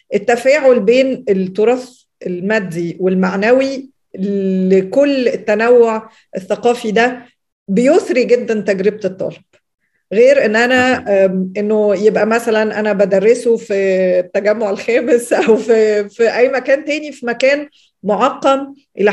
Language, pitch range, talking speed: Arabic, 210-250 Hz, 105 wpm